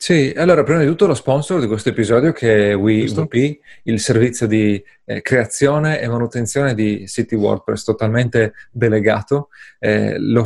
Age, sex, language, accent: 30-49, male, Italian, native